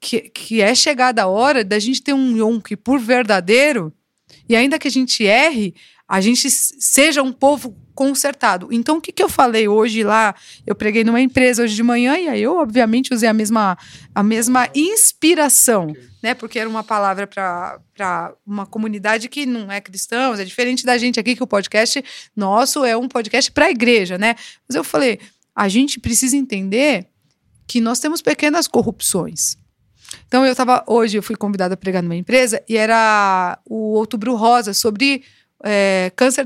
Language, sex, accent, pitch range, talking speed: Portuguese, female, Brazilian, 220-275 Hz, 175 wpm